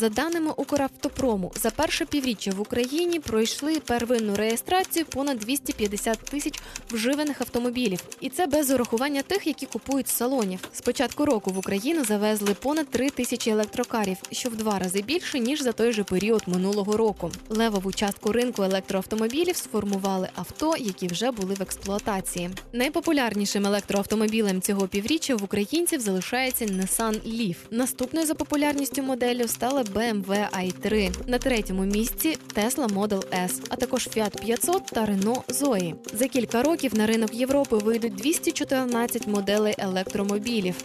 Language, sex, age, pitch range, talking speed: Ukrainian, female, 20-39, 205-270 Hz, 145 wpm